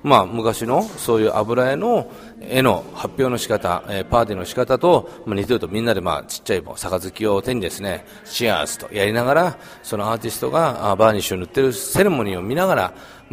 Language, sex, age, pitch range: Japanese, male, 40-59, 100-135 Hz